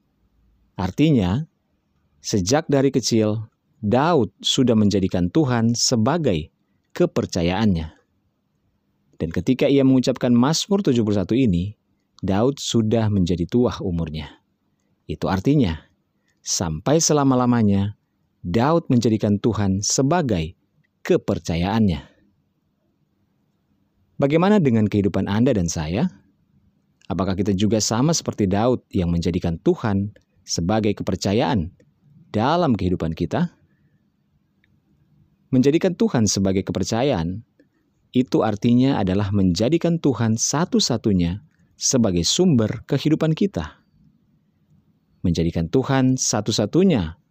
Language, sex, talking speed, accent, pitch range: Indonesian, male, 85 wpm, native, 95-135 Hz